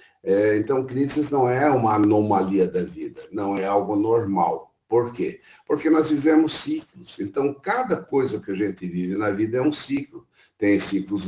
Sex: male